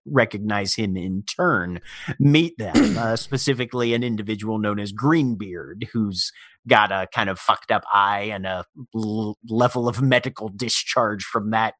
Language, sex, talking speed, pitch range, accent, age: English, male, 145 wpm, 105-130 Hz, American, 30-49